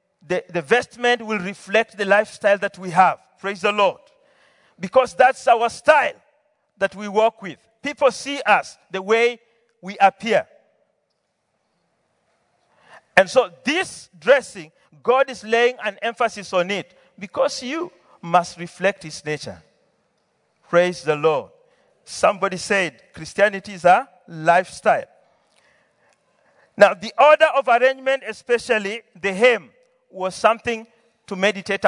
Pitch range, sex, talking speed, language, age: 190-255 Hz, male, 125 wpm, English, 50-69